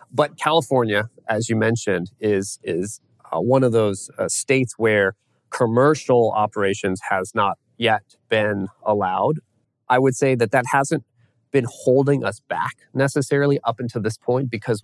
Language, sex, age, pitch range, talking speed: English, male, 30-49, 105-130 Hz, 150 wpm